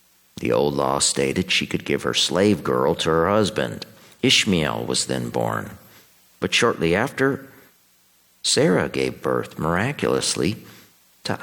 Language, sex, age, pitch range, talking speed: English, male, 50-69, 65-100 Hz, 130 wpm